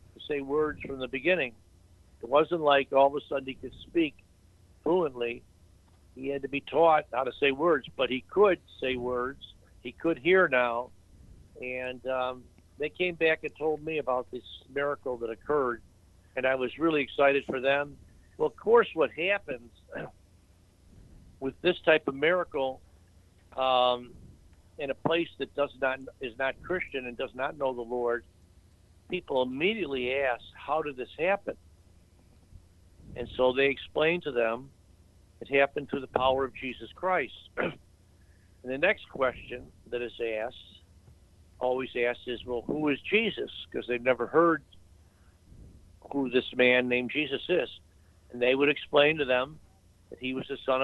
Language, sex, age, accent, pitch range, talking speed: English, male, 60-79, American, 90-140 Hz, 160 wpm